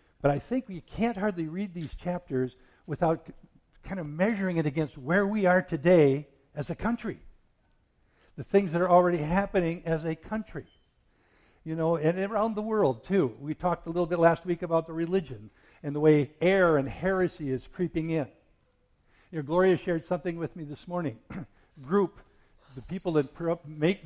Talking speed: 180 wpm